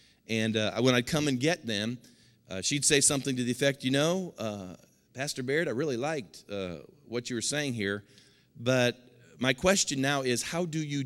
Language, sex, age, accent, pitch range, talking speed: English, male, 50-69, American, 110-140 Hz, 200 wpm